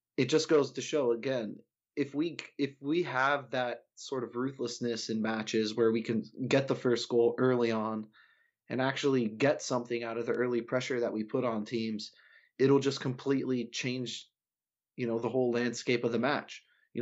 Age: 20-39